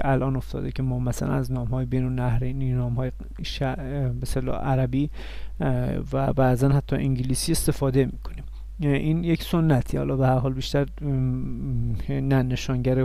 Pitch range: 125-150 Hz